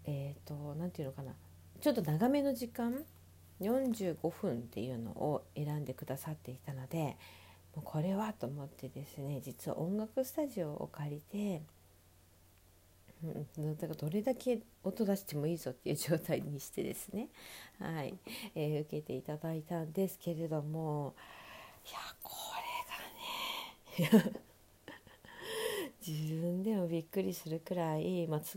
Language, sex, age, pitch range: Japanese, female, 40-59, 140-205 Hz